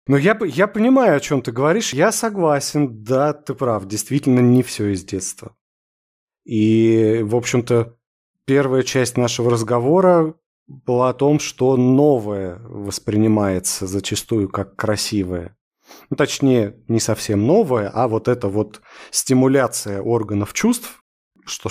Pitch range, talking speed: 105-135 Hz, 130 wpm